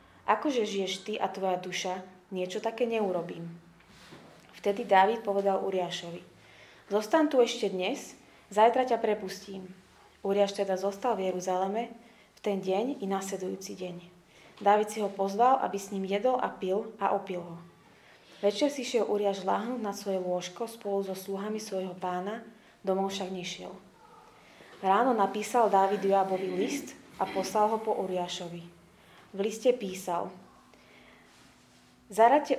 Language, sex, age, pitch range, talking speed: Slovak, female, 20-39, 185-225 Hz, 135 wpm